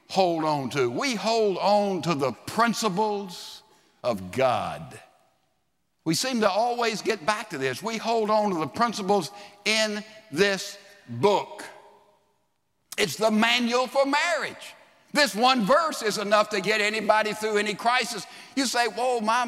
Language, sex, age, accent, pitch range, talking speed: English, male, 60-79, American, 150-220 Hz, 150 wpm